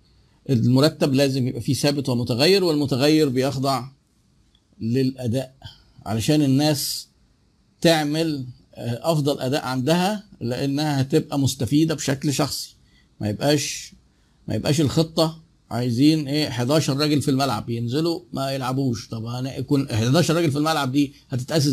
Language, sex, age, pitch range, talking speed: Arabic, male, 50-69, 125-155 Hz, 115 wpm